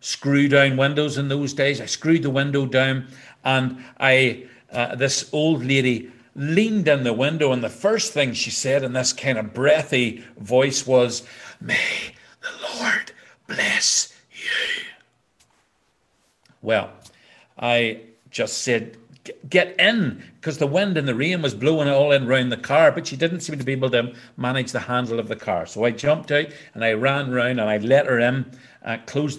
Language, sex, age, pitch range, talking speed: English, male, 50-69, 120-145 Hz, 180 wpm